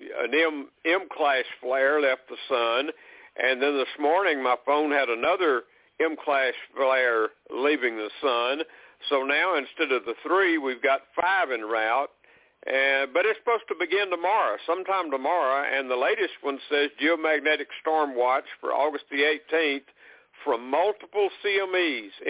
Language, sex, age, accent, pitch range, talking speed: English, male, 60-79, American, 145-235 Hz, 145 wpm